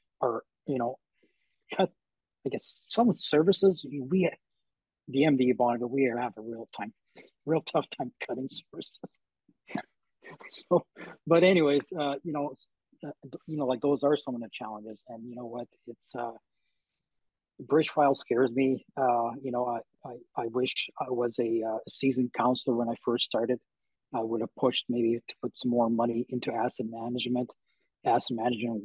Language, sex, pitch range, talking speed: English, male, 120-140 Hz, 175 wpm